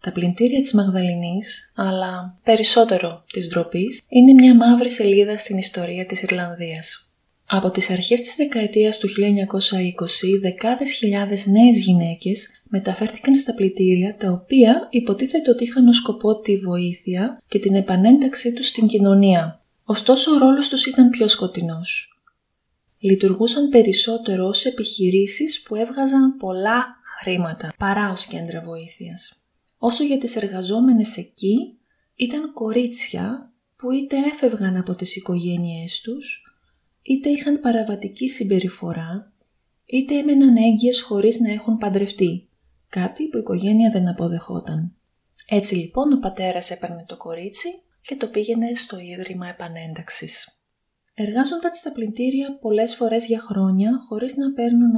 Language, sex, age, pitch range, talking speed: Greek, female, 20-39, 185-245 Hz, 130 wpm